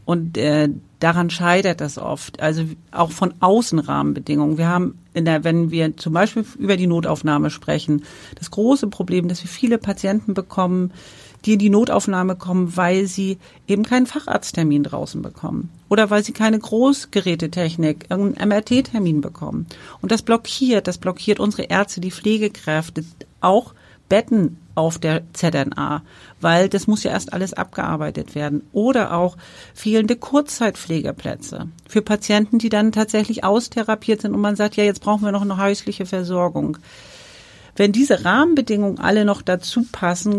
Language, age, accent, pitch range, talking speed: German, 40-59, German, 160-210 Hz, 150 wpm